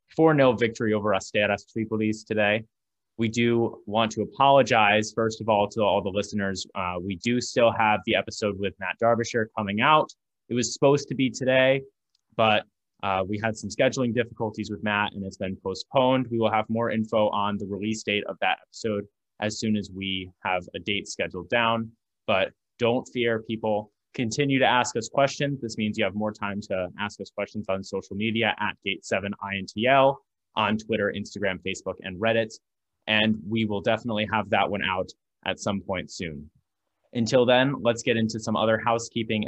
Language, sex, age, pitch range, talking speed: English, male, 20-39, 100-120 Hz, 185 wpm